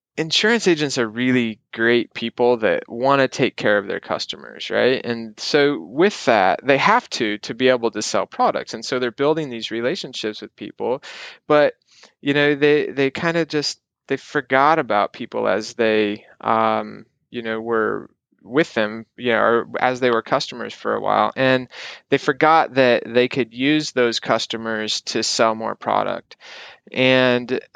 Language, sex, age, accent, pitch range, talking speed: English, male, 20-39, American, 110-130 Hz, 170 wpm